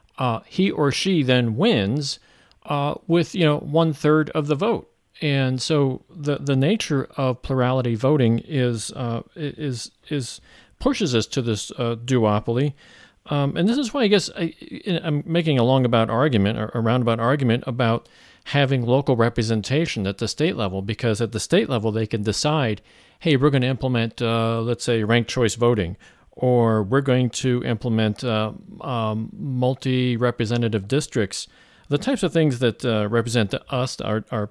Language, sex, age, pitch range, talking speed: English, male, 40-59, 115-145 Hz, 170 wpm